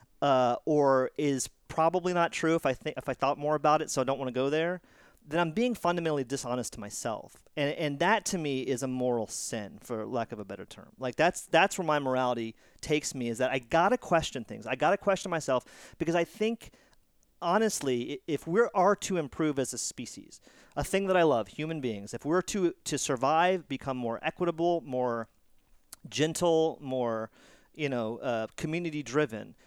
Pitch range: 130-170 Hz